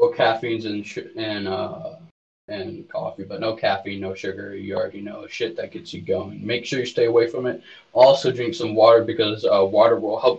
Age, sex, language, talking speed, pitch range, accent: 20-39, male, English, 215 wpm, 110-160 Hz, American